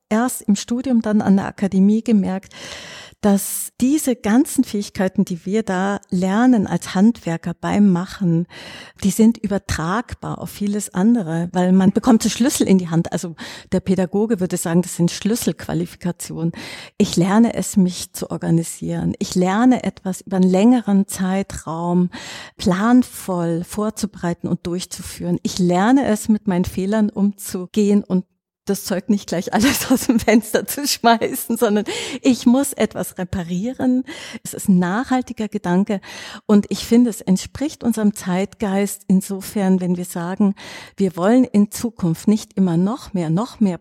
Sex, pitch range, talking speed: female, 180-220 Hz, 150 wpm